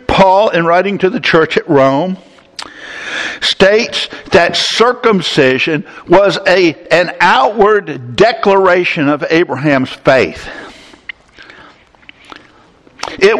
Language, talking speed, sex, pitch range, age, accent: English, 90 wpm, male, 165-215 Hz, 60-79, American